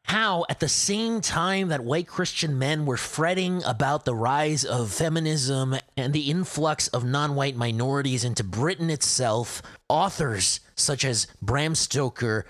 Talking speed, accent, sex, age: 145 wpm, American, male, 30-49